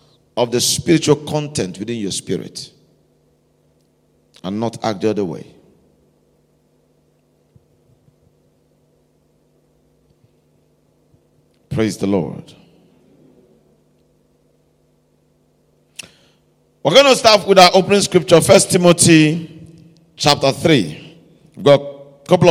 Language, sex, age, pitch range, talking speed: English, male, 50-69, 120-170 Hz, 85 wpm